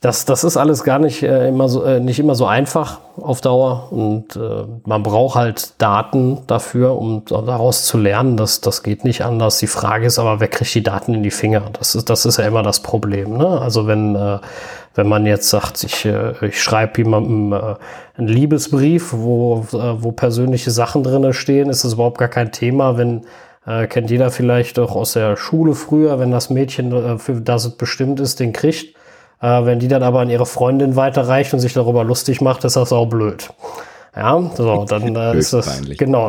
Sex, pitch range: male, 110-130 Hz